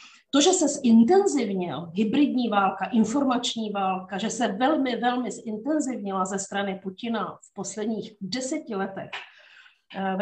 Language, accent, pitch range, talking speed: Czech, native, 195-235 Hz, 125 wpm